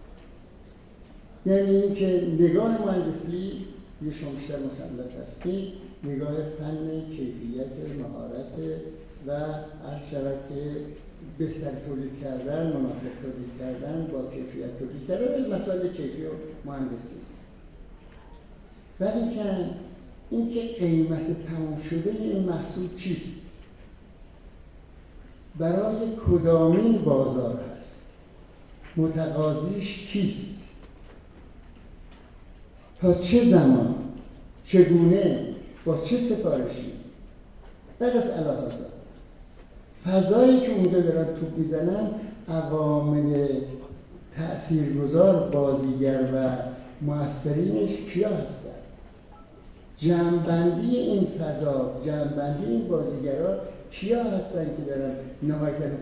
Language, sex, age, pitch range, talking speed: Persian, male, 60-79, 135-180 Hz, 85 wpm